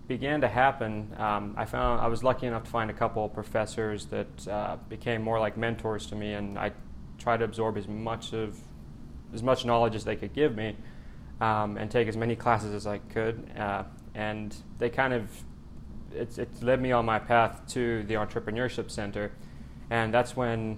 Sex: male